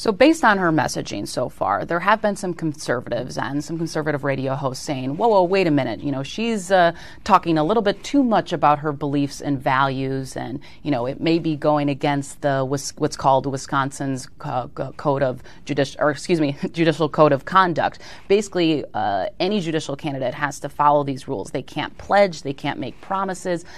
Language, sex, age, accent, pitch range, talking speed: English, female, 30-49, American, 140-180 Hz, 195 wpm